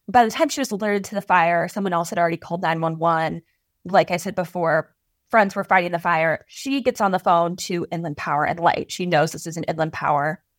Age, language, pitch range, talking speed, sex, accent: 20-39, English, 170-205 Hz, 230 wpm, female, American